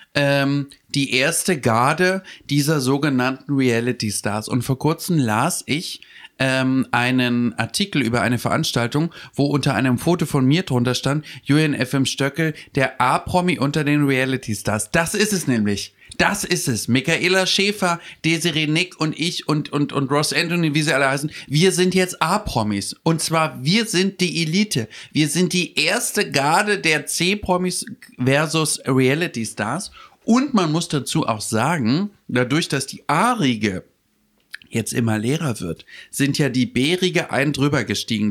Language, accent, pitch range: German, German, 130-175 Hz